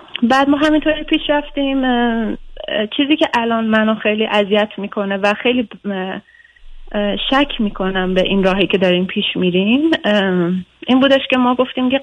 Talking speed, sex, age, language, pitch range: 145 wpm, female, 30-49, Persian, 190-255 Hz